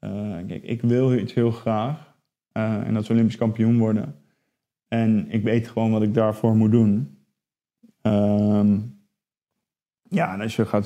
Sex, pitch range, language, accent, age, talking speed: male, 110-120 Hz, Dutch, Dutch, 20-39, 155 wpm